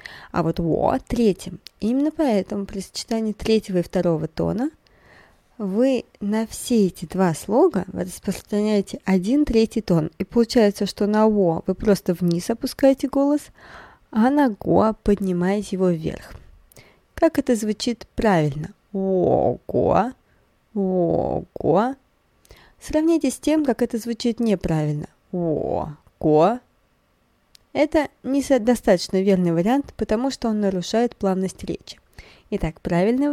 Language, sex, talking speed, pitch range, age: Russian, female, 115 wpm, 185-255 Hz, 20-39